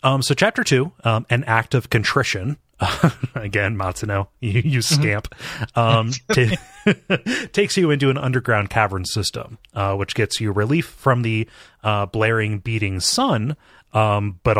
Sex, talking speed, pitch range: male, 150 wpm, 100-120 Hz